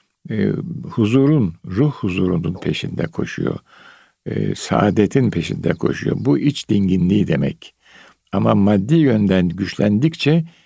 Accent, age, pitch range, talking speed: native, 60-79, 95-140 Hz, 100 wpm